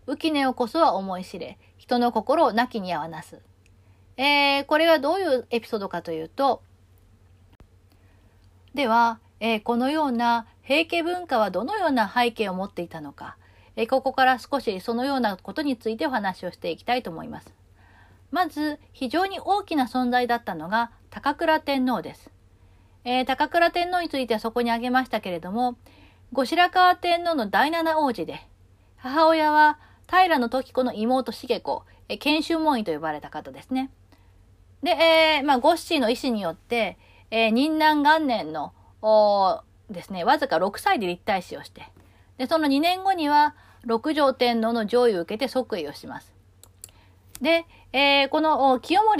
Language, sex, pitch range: Japanese, female, 195-305 Hz